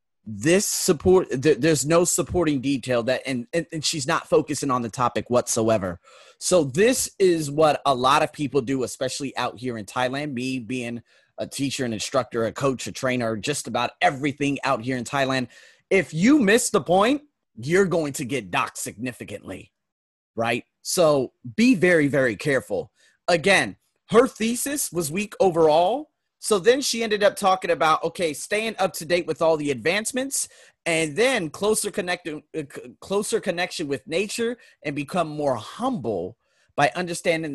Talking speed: 165 wpm